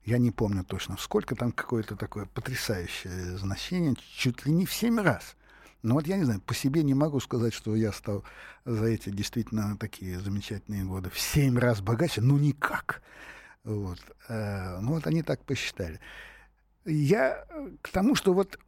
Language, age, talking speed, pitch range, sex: Russian, 60-79, 170 wpm, 115-170 Hz, male